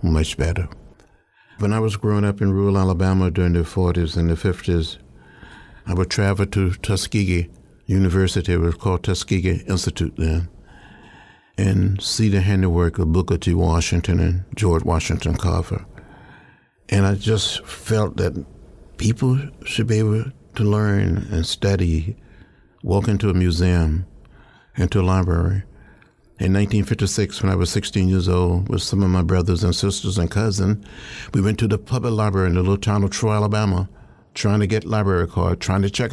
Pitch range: 90-105 Hz